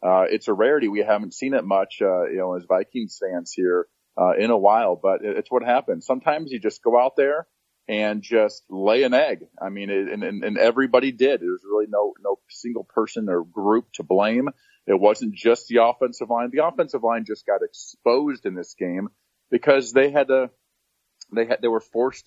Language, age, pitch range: English, 40-59, 105-155 Hz